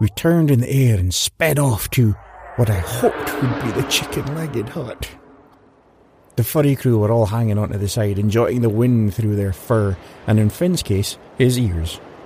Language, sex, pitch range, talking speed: English, male, 110-165 Hz, 185 wpm